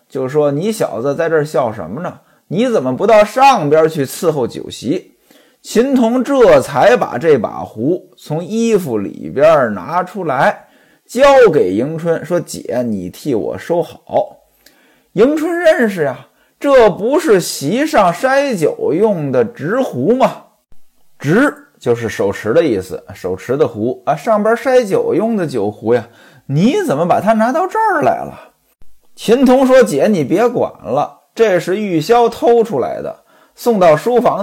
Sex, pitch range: male, 170-265 Hz